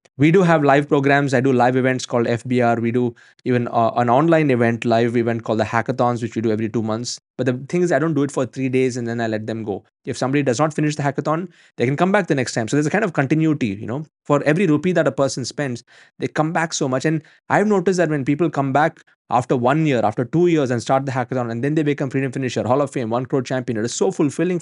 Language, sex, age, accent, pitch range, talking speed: English, male, 20-39, Indian, 115-155 Hz, 280 wpm